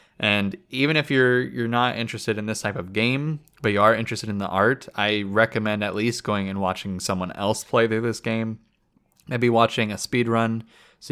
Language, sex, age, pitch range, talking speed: English, male, 20-39, 95-115 Hz, 205 wpm